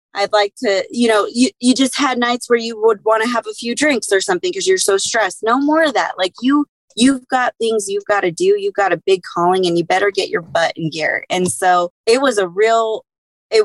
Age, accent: 20-39, American